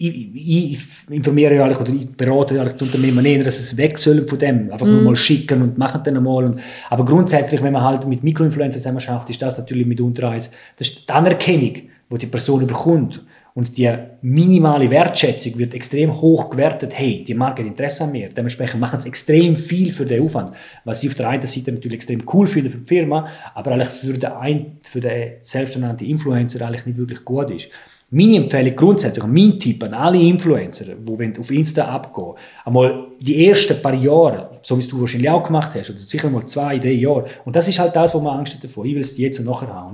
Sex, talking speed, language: male, 215 wpm, German